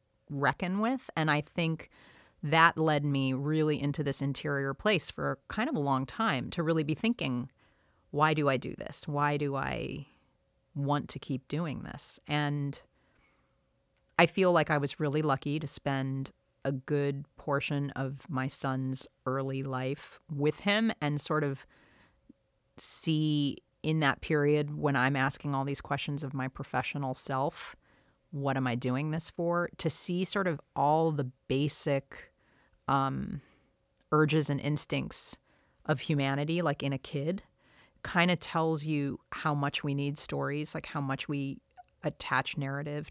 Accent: American